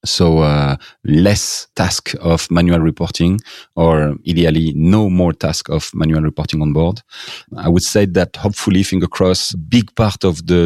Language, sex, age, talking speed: English, male, 30-49, 160 wpm